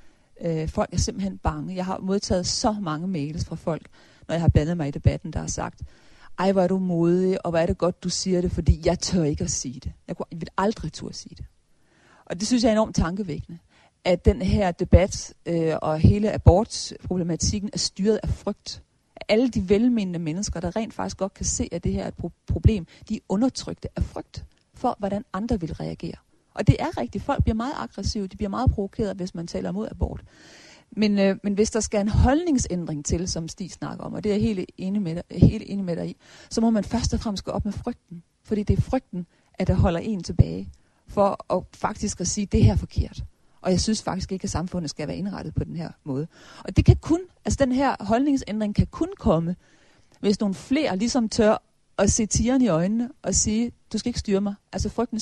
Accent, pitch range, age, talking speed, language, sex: native, 170-220 Hz, 40-59, 225 wpm, Danish, female